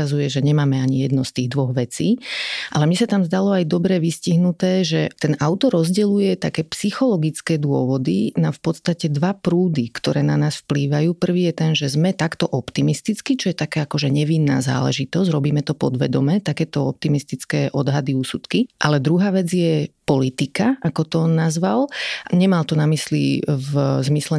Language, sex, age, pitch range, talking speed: Slovak, female, 30-49, 145-170 Hz, 165 wpm